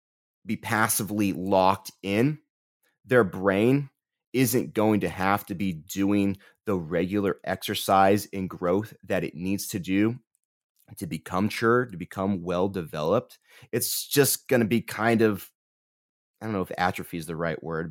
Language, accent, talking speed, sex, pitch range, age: English, American, 150 wpm, male, 95-120 Hz, 30-49